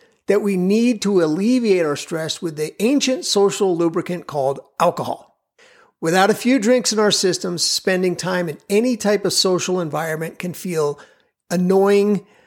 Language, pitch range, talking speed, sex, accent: English, 165-210 Hz, 155 wpm, male, American